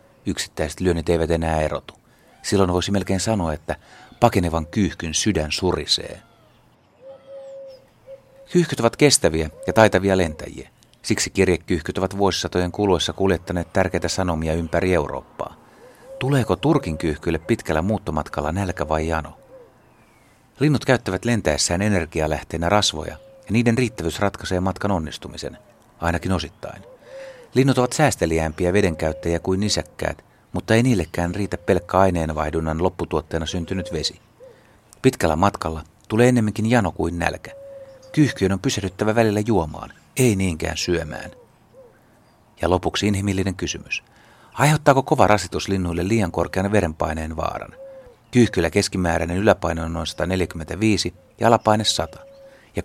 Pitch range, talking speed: 85-110 Hz, 115 wpm